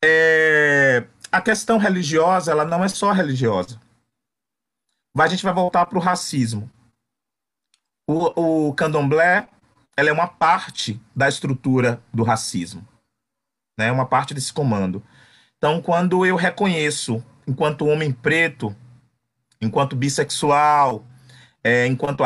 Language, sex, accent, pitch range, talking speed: English, male, Brazilian, 125-165 Hz, 115 wpm